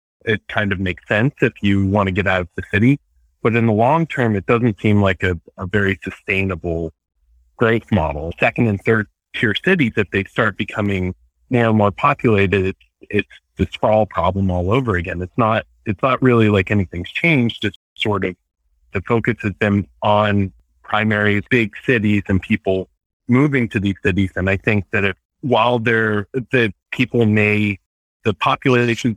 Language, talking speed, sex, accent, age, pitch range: English, 175 wpm, male, American, 30-49, 95-120 Hz